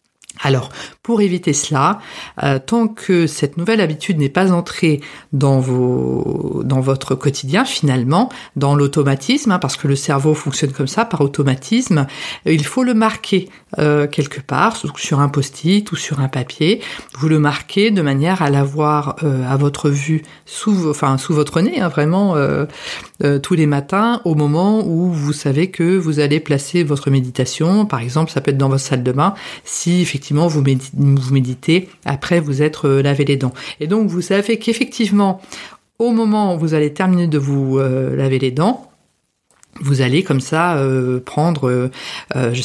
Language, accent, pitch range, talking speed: French, French, 140-175 Hz, 175 wpm